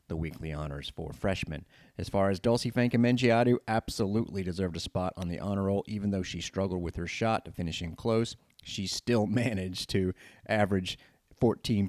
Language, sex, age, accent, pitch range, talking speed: English, male, 30-49, American, 90-115 Hz, 175 wpm